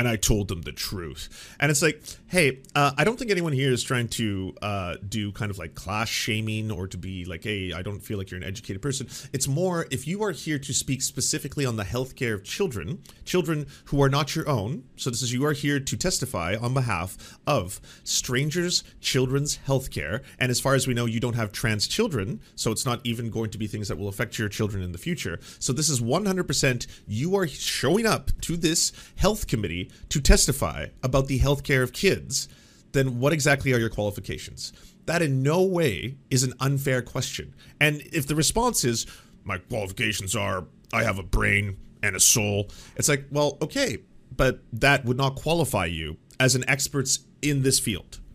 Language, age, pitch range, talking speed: English, 30-49, 105-140 Hz, 205 wpm